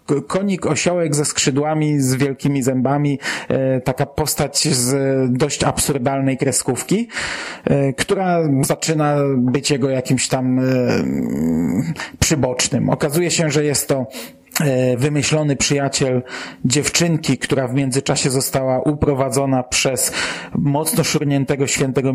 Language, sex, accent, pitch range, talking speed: Polish, male, native, 130-150 Hz, 100 wpm